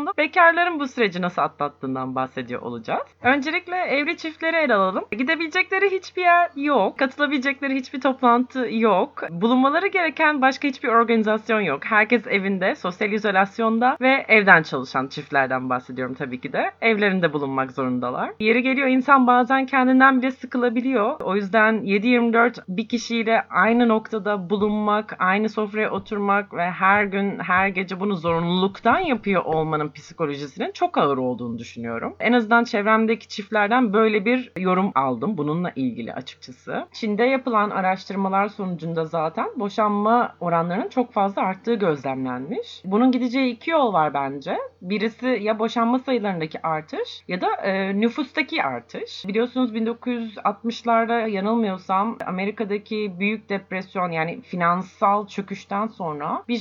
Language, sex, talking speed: Turkish, female, 130 wpm